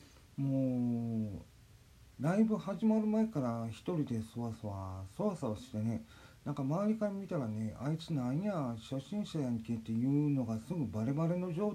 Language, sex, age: Japanese, male, 40-59